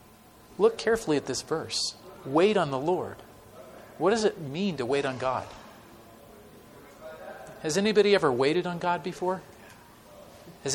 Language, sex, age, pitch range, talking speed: English, male, 40-59, 110-150 Hz, 140 wpm